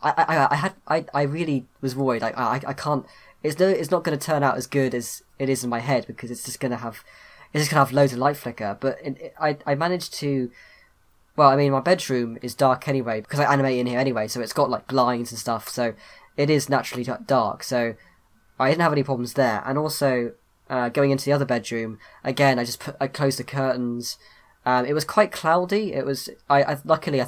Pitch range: 120-140 Hz